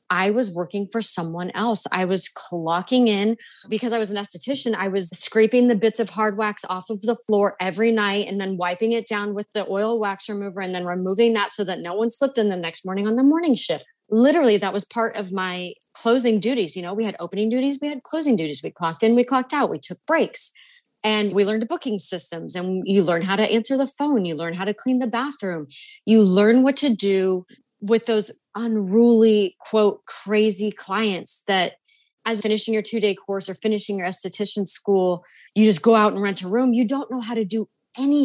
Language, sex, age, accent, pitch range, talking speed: English, female, 30-49, American, 195-230 Hz, 220 wpm